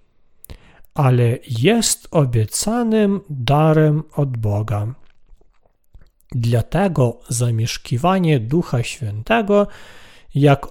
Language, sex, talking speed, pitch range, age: Polish, male, 60 wpm, 120-190 Hz, 40-59